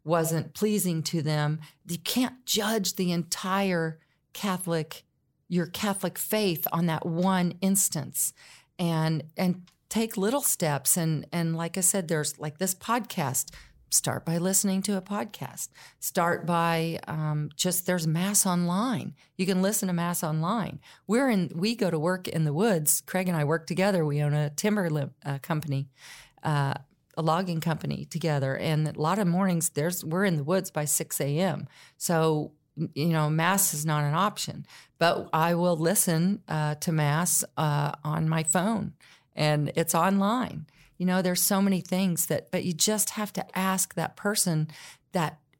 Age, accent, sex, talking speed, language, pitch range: 40-59, American, female, 165 wpm, English, 155-190 Hz